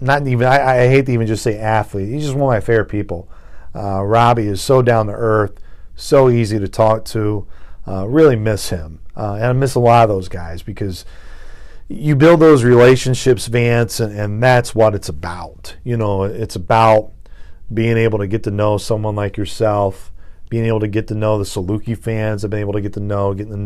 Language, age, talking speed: English, 40-59, 220 wpm